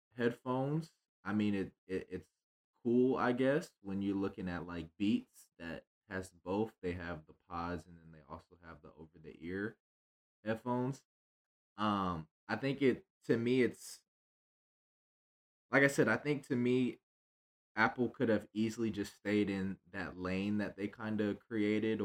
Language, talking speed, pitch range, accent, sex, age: English, 165 wpm, 95-120 Hz, American, male, 20-39